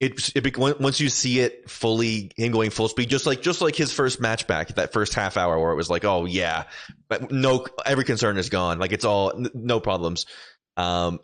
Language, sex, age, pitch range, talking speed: English, male, 20-39, 95-125 Hz, 225 wpm